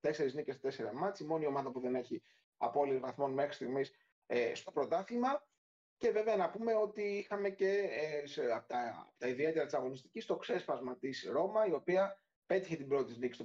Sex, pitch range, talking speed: male, 140-190 Hz, 190 wpm